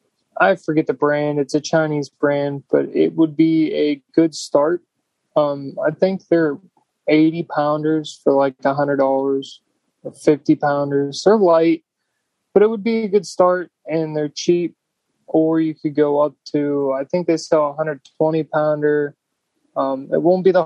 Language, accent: English, American